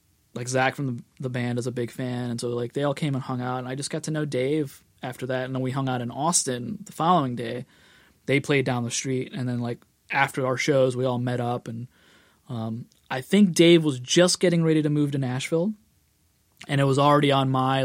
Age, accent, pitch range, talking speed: 20-39, American, 125-150 Hz, 240 wpm